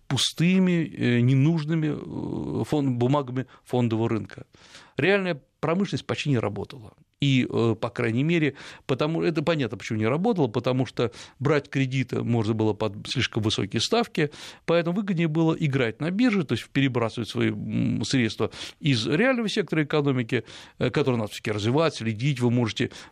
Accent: native